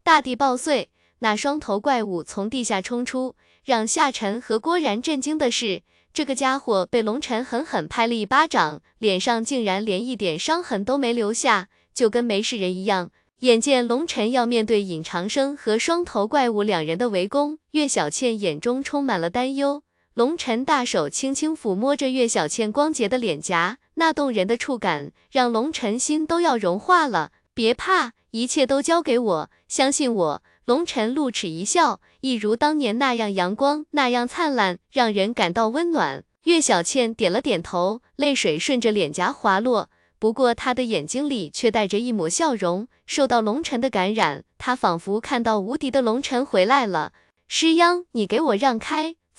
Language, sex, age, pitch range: Chinese, female, 20-39, 210-280 Hz